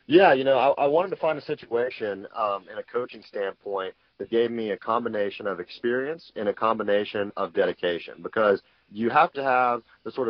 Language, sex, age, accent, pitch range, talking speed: English, male, 30-49, American, 100-135 Hz, 200 wpm